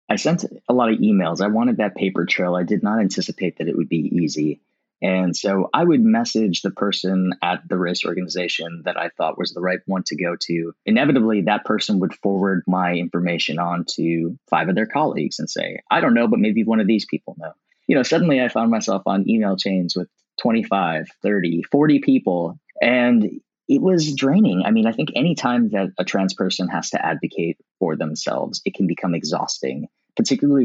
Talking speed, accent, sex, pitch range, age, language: 205 wpm, American, male, 90-155 Hz, 30-49, English